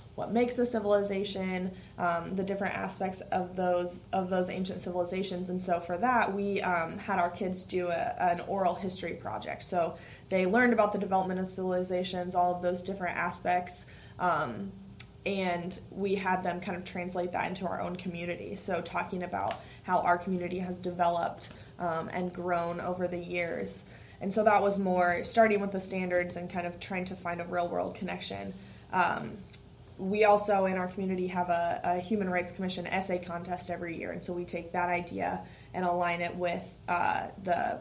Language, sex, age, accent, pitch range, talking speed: English, female, 20-39, American, 175-190 Hz, 185 wpm